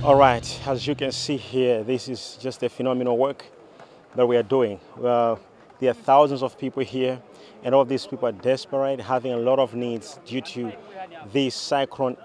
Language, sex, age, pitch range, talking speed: English, male, 30-49, 125-140 Hz, 185 wpm